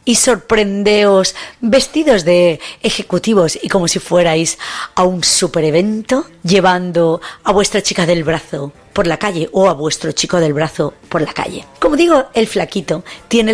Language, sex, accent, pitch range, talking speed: Spanish, female, Spanish, 170-220 Hz, 160 wpm